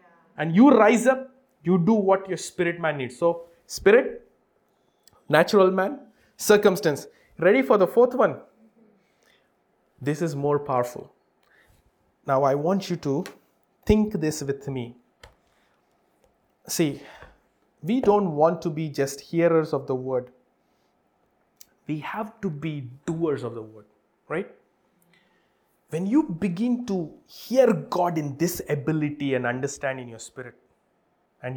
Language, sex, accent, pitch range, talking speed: English, male, Indian, 140-200 Hz, 130 wpm